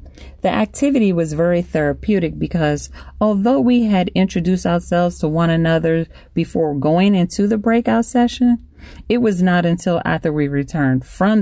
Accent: American